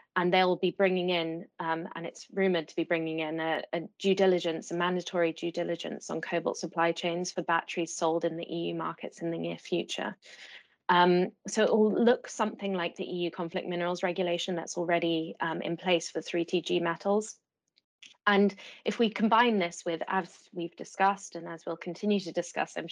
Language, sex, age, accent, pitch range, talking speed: English, female, 20-39, British, 165-185 Hz, 190 wpm